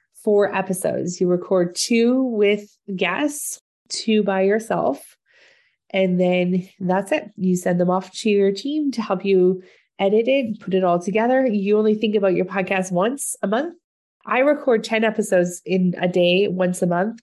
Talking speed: 170 wpm